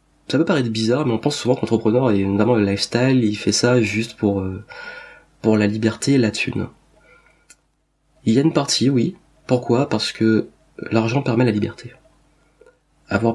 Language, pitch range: French, 110-130 Hz